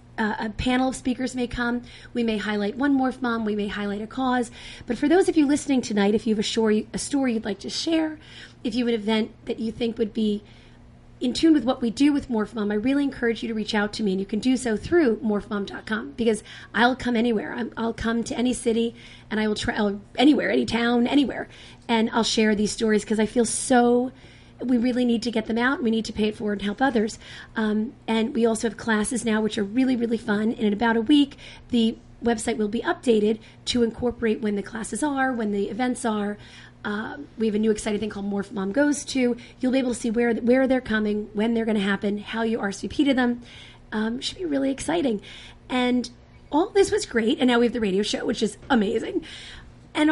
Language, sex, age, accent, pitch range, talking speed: English, female, 30-49, American, 215-255 Hz, 240 wpm